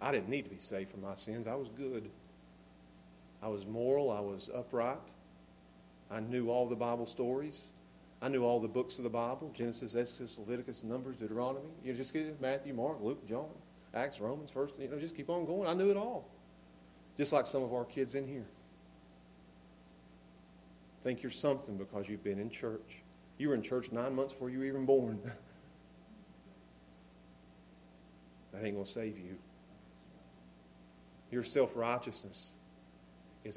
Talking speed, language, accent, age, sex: 170 wpm, English, American, 40-59, male